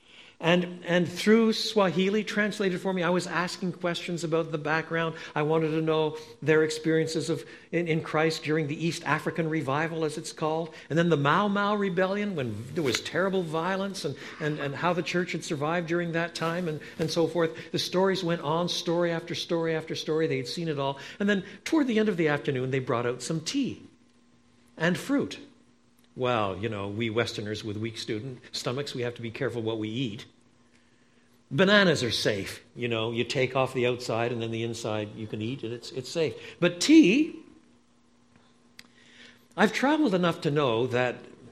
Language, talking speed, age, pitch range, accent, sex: English, 190 wpm, 60-79, 125-175 Hz, American, male